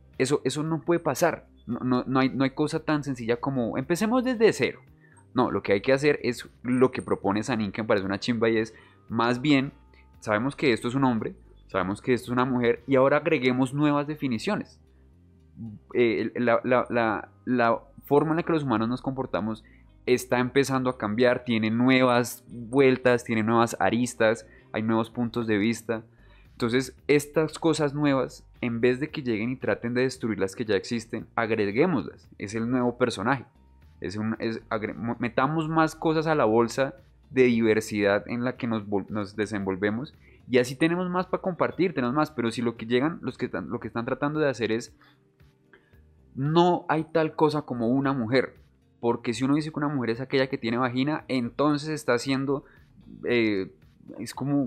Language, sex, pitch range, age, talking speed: Spanish, male, 110-140 Hz, 20-39, 190 wpm